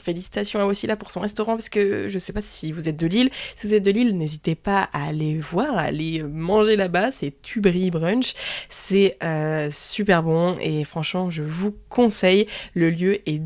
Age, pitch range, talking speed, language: 20-39, 170-205 Hz, 200 wpm, French